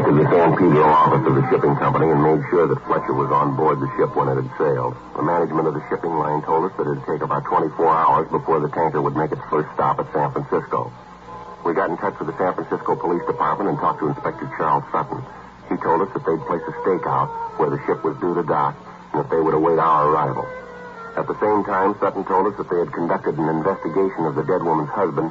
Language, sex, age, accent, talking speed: English, male, 60-79, American, 250 wpm